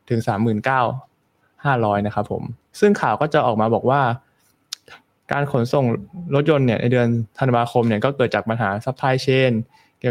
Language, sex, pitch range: Thai, male, 110-140 Hz